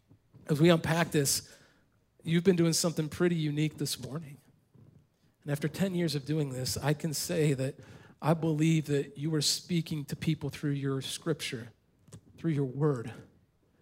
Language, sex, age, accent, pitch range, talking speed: English, male, 40-59, American, 145-175 Hz, 160 wpm